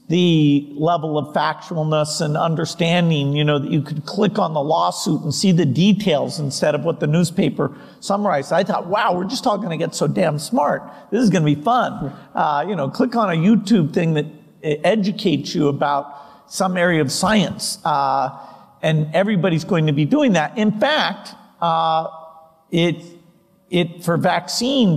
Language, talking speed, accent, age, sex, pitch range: English, 175 wpm, American, 50-69, male, 155-190 Hz